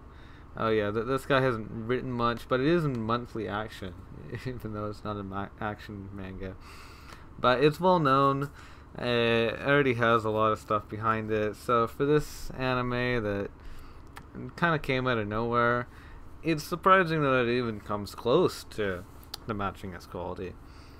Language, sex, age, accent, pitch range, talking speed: English, male, 20-39, American, 90-130 Hz, 170 wpm